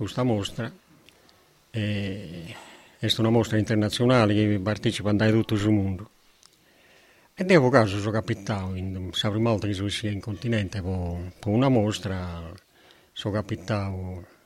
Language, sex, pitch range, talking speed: Italian, male, 95-115 Hz, 120 wpm